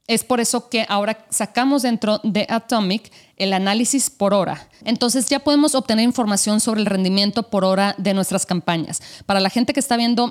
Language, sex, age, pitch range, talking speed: Spanish, female, 30-49, 185-230 Hz, 185 wpm